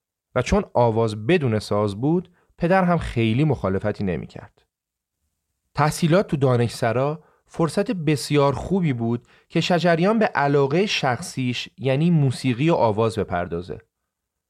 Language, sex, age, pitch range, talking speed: Persian, male, 30-49, 125-175 Hz, 120 wpm